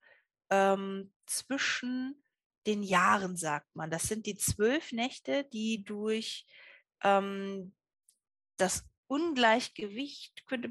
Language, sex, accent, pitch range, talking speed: German, female, German, 185-245 Hz, 90 wpm